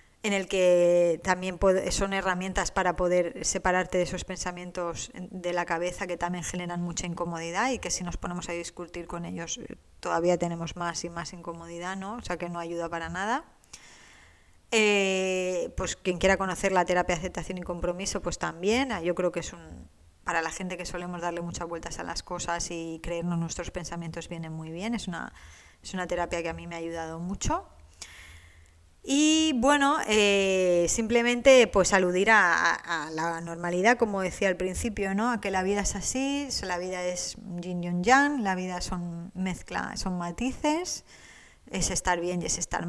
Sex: female